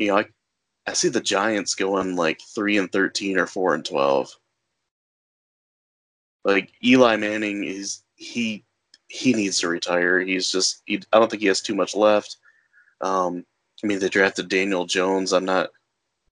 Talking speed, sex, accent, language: 165 wpm, male, American, English